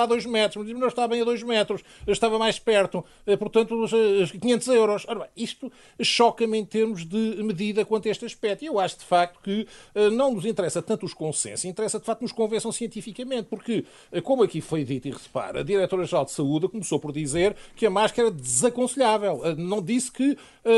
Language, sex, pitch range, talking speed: Portuguese, male, 170-225 Hz, 195 wpm